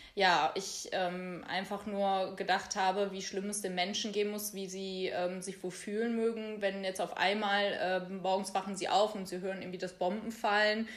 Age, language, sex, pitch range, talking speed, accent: 20-39, German, female, 185-215 Hz, 195 wpm, German